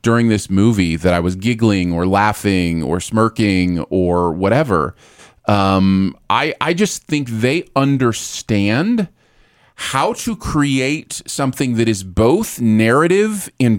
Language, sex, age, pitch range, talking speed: English, male, 30-49, 95-135 Hz, 125 wpm